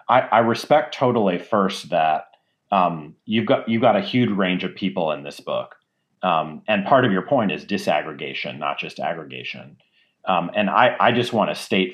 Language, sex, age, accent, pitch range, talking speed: English, male, 40-59, American, 90-105 Hz, 190 wpm